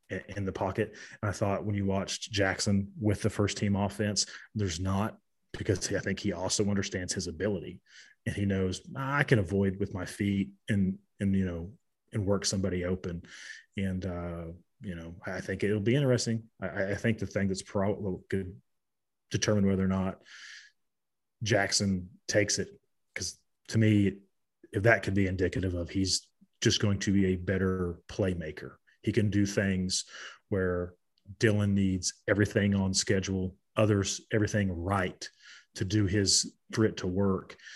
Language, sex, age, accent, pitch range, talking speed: English, male, 30-49, American, 95-105 Hz, 165 wpm